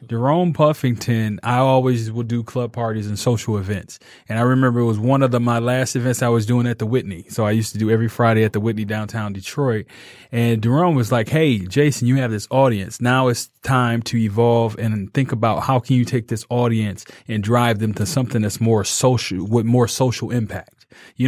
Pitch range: 110-130 Hz